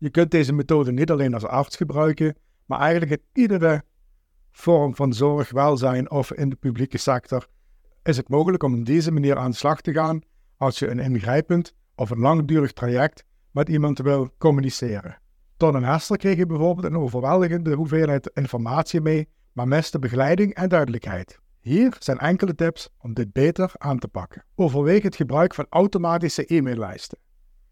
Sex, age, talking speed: male, 50-69, 170 wpm